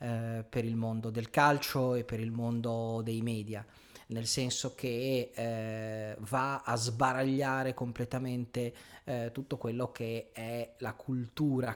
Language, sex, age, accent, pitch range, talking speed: Italian, male, 30-49, native, 115-135 Hz, 135 wpm